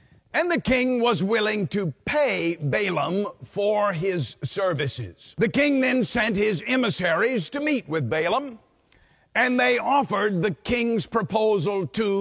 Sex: male